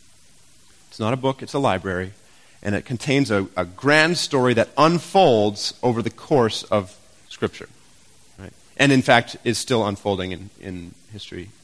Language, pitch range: English, 100-155 Hz